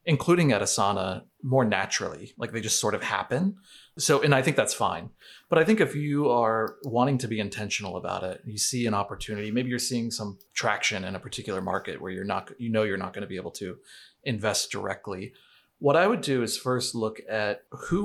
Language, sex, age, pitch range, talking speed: English, male, 30-49, 105-125 Hz, 215 wpm